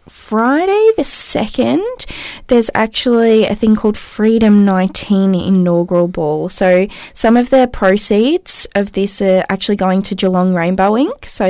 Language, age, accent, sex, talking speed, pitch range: English, 10-29, Australian, female, 140 wpm, 190-240 Hz